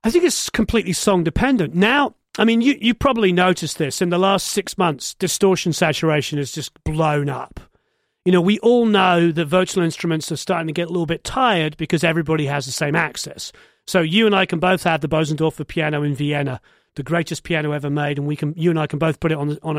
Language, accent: English, British